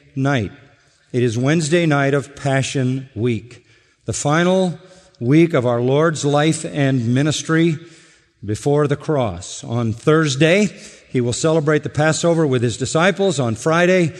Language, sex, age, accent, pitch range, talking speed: English, male, 50-69, American, 120-155 Hz, 130 wpm